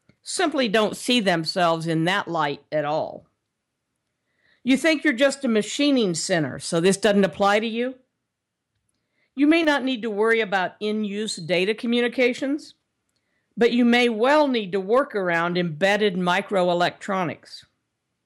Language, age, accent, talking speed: English, 50-69, American, 140 wpm